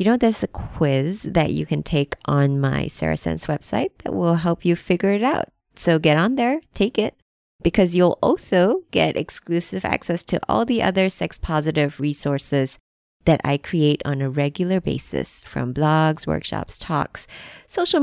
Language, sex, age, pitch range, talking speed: English, female, 20-39, 145-230 Hz, 170 wpm